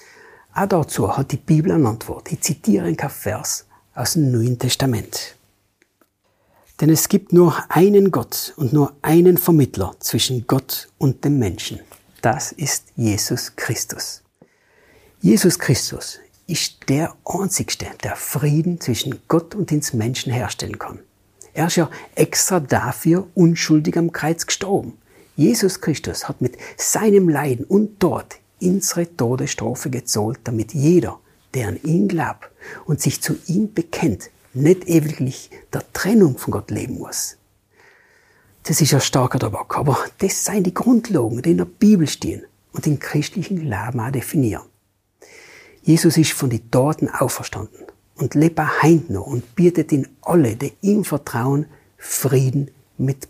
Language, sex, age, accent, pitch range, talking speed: German, male, 60-79, German, 125-180 Hz, 140 wpm